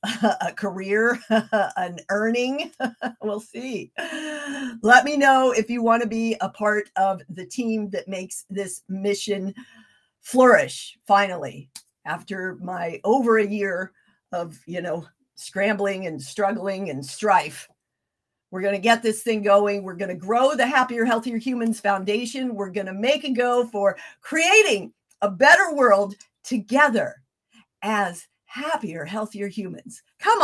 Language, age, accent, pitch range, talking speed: English, 50-69, American, 190-245 Hz, 140 wpm